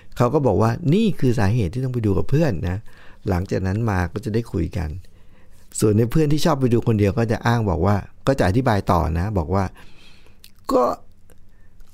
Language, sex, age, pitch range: Thai, male, 60-79, 95-125 Hz